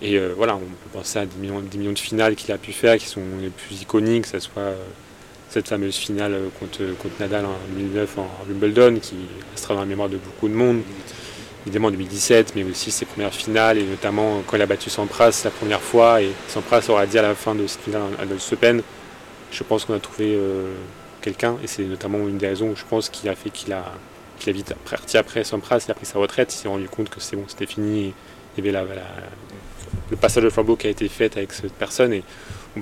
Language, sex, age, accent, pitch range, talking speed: French, male, 30-49, French, 95-110 Hz, 250 wpm